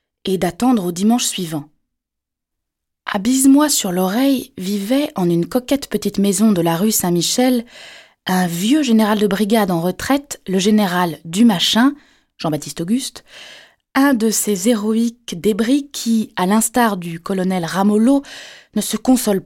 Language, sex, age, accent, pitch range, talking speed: French, female, 20-39, French, 185-260 Hz, 140 wpm